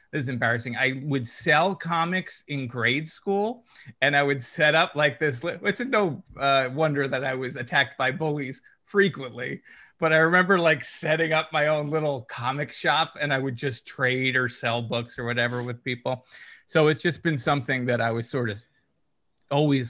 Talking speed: 185 wpm